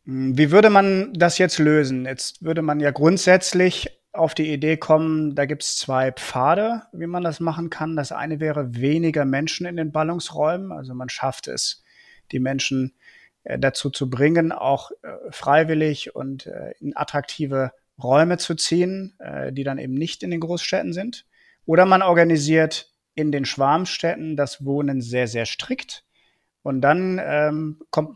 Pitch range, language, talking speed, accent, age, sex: 140-170 Hz, German, 155 wpm, German, 30-49, male